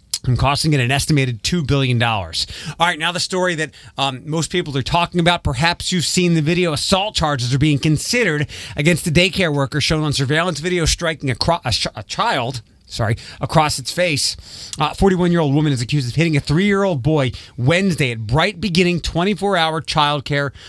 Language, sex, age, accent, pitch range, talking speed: English, male, 30-49, American, 130-175 Hz, 185 wpm